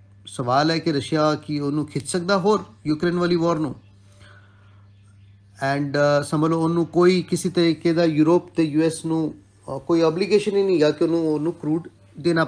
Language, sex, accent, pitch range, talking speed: English, male, Indian, 105-170 Hz, 135 wpm